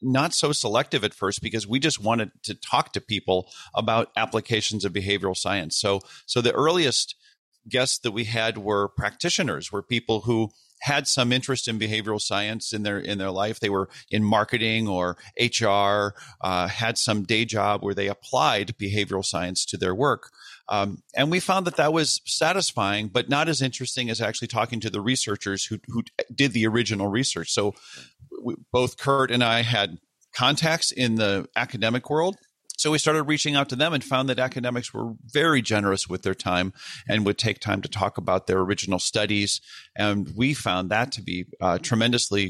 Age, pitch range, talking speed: 40-59, 100-130 Hz, 185 wpm